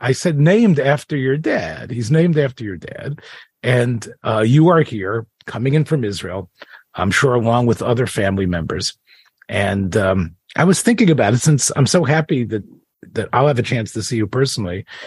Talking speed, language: 190 wpm, English